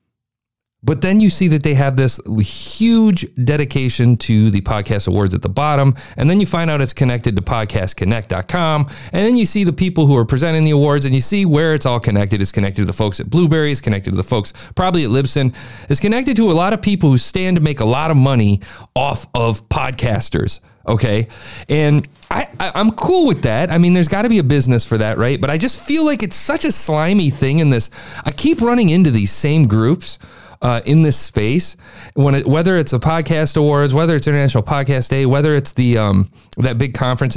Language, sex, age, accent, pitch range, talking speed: English, male, 40-59, American, 110-155 Hz, 215 wpm